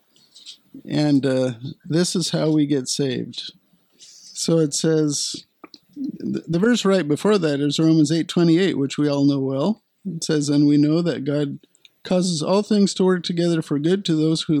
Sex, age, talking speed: male, 50-69, 175 wpm